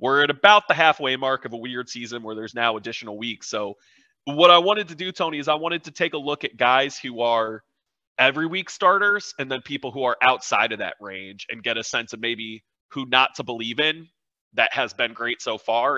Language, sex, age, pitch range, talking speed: English, male, 30-49, 115-155 Hz, 235 wpm